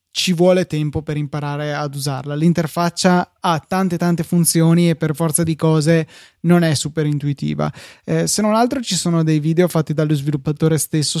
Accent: native